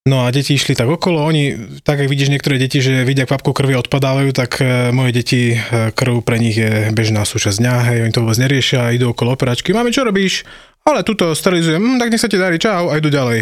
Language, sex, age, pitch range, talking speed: Slovak, male, 20-39, 120-145 Hz, 220 wpm